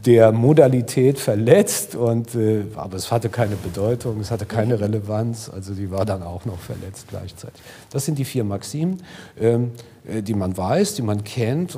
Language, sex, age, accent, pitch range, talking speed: German, male, 50-69, German, 110-140 Hz, 165 wpm